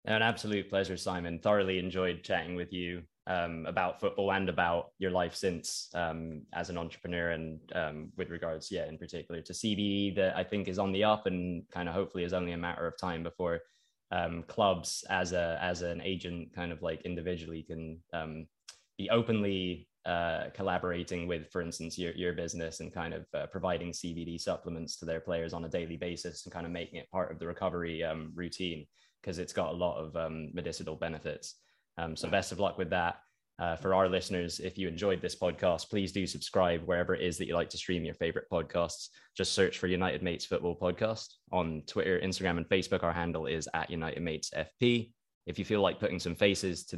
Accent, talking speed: British, 205 wpm